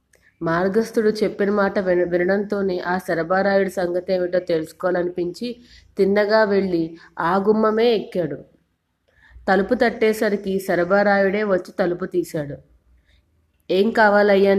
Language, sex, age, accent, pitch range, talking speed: Telugu, female, 20-39, native, 175-200 Hz, 95 wpm